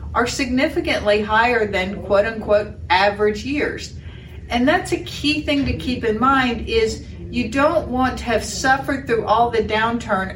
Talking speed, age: 155 wpm, 40-59